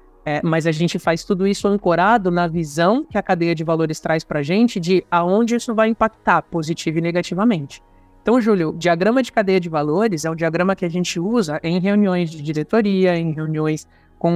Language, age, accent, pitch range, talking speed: Portuguese, 20-39, Brazilian, 165-210 Hz, 195 wpm